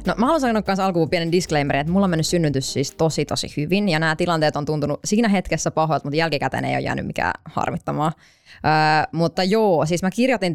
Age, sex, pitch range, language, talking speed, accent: 20-39, female, 155-215 Hz, Finnish, 215 wpm, native